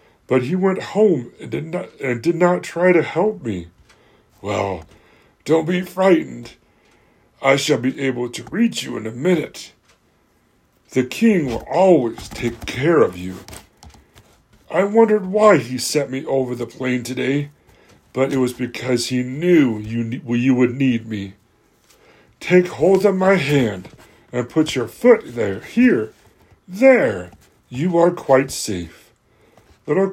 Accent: American